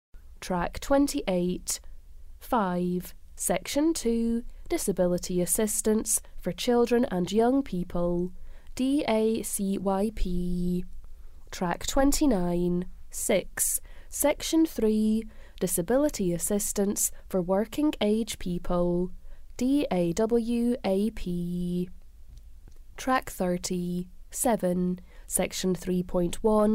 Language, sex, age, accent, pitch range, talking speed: English, female, 20-39, British, 180-235 Hz, 65 wpm